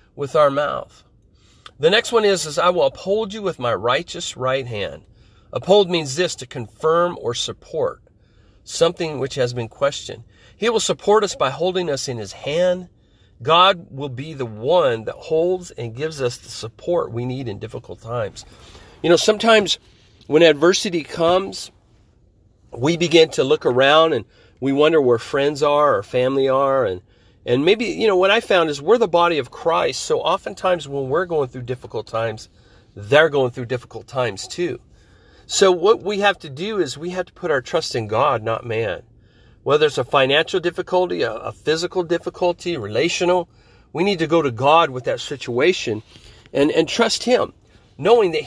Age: 40-59